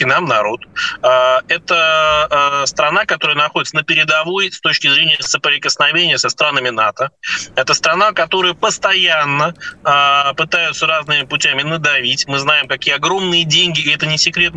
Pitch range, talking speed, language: 140-175 Hz, 130 wpm, Russian